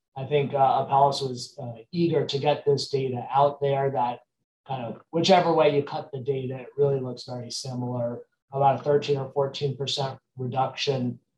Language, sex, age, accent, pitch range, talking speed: English, male, 30-49, American, 135-175 Hz, 175 wpm